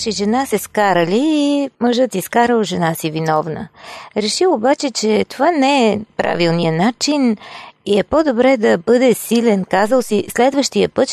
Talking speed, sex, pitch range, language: 150 wpm, female, 185-255 Hz, Bulgarian